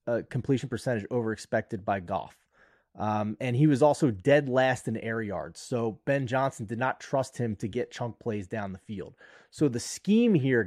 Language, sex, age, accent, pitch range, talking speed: English, male, 30-49, American, 115-145 Hz, 190 wpm